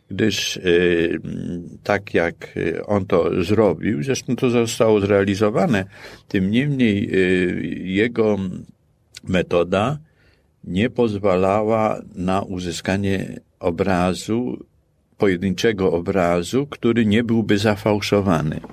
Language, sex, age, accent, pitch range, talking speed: Polish, male, 50-69, native, 90-105 Hz, 80 wpm